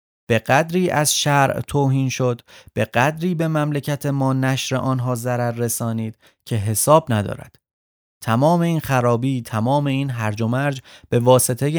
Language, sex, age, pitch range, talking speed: Persian, male, 30-49, 115-155 Hz, 145 wpm